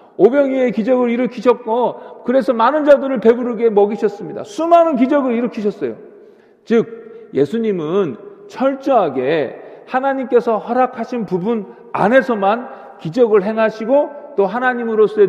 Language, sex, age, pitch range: Korean, male, 40-59, 205-275 Hz